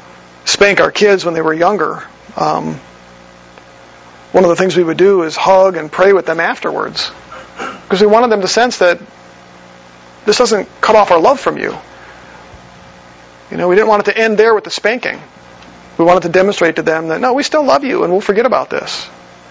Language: English